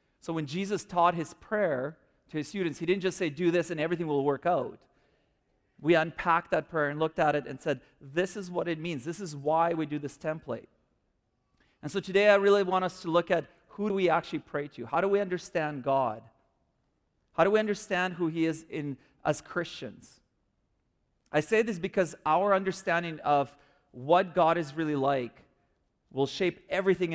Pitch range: 145-185 Hz